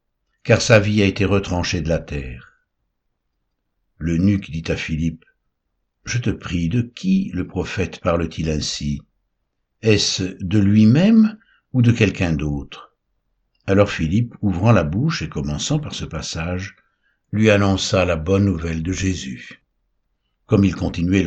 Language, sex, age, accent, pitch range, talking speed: French, male, 60-79, French, 80-110 Hz, 140 wpm